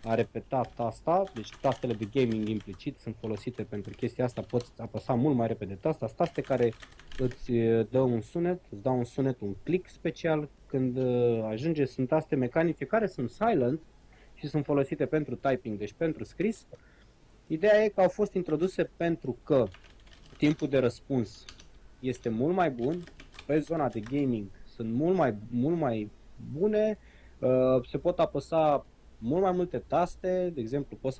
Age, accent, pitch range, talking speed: 20-39, native, 110-150 Hz, 160 wpm